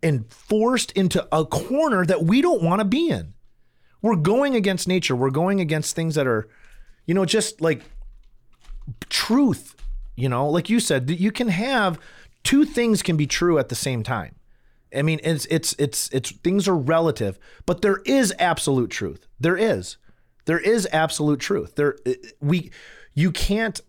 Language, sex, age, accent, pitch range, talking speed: English, male, 30-49, American, 140-185 Hz, 175 wpm